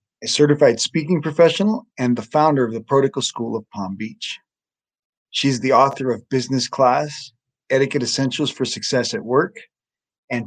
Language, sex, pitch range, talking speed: English, male, 120-150 Hz, 155 wpm